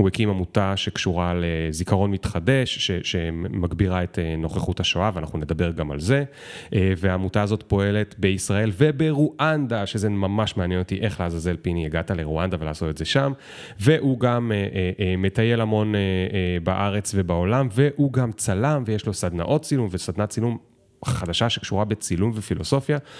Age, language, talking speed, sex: 30-49, Hebrew, 145 wpm, male